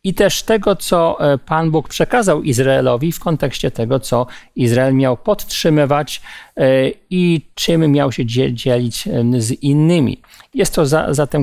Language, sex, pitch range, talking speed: Polish, male, 125-165 Hz, 135 wpm